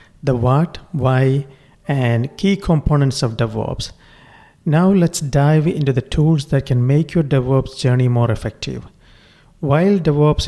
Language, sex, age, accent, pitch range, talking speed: English, male, 50-69, Indian, 125-150 Hz, 135 wpm